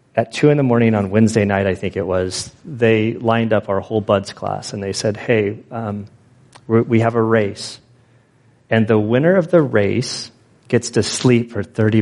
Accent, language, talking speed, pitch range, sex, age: American, English, 195 wpm, 110-135 Hz, male, 30-49